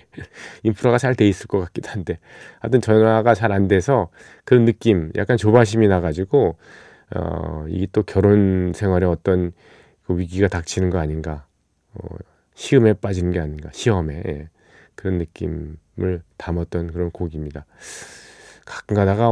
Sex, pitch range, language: male, 85-115 Hz, Korean